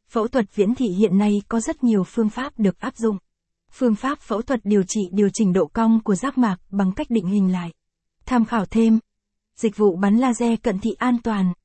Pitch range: 200-240 Hz